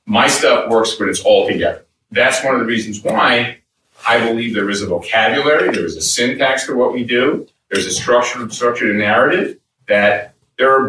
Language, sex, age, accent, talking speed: English, male, 40-59, American, 195 wpm